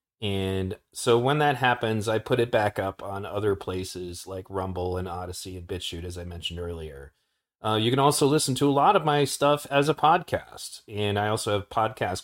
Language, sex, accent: English, male, American